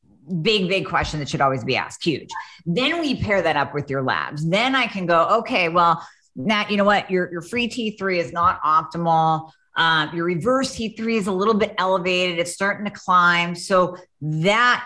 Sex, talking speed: female, 200 wpm